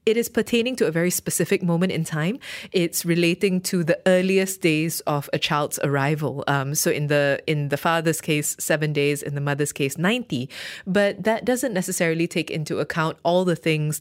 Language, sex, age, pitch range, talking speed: English, female, 20-39, 155-195 Hz, 190 wpm